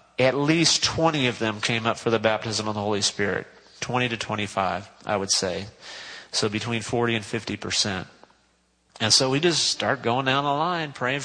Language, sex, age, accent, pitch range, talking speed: English, male, 40-59, American, 115-145 Hz, 185 wpm